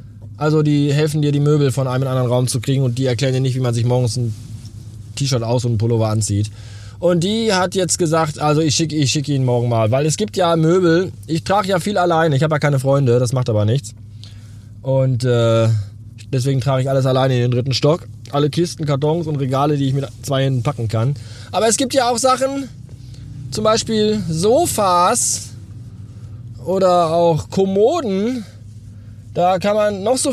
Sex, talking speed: male, 200 wpm